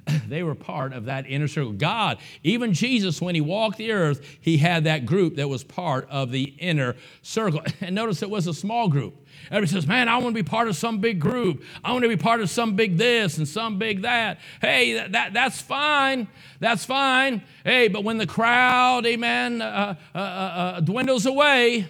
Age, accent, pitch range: 50-69, American, 145-225 Hz